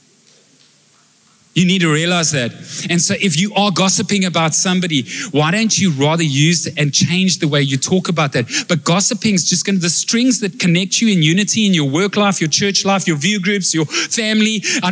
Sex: male